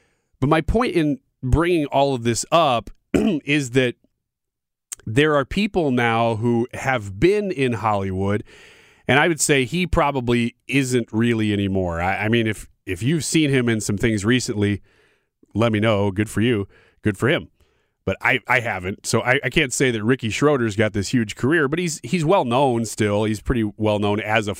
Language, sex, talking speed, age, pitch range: English, male, 185 wpm, 30-49, 110-150 Hz